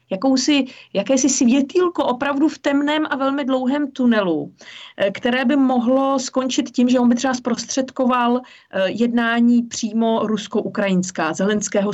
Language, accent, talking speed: Czech, native, 115 wpm